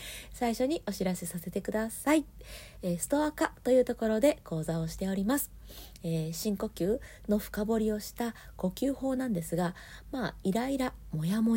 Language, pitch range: Japanese, 170-230 Hz